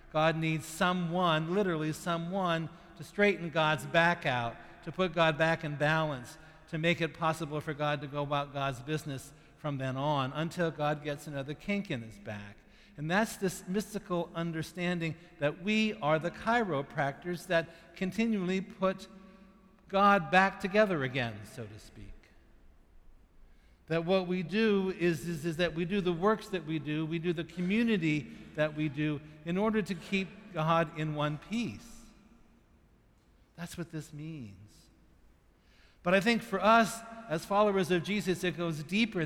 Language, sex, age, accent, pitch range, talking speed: English, male, 60-79, American, 150-190 Hz, 160 wpm